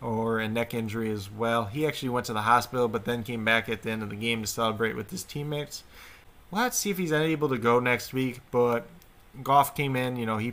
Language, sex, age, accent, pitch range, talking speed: English, male, 20-39, American, 110-125 Hz, 250 wpm